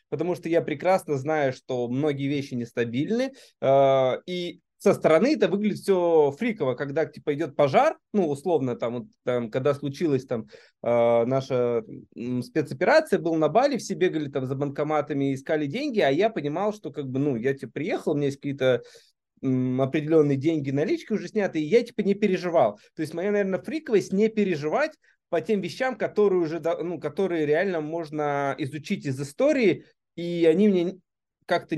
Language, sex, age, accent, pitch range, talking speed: Russian, male, 20-39, native, 135-180 Hz, 170 wpm